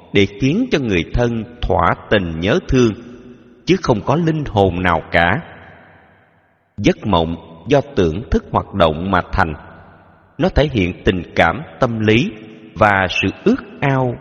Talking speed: 150 wpm